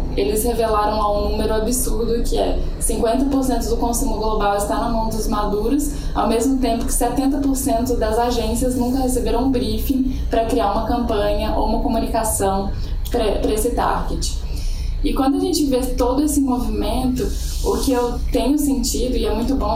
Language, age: Portuguese, 10-29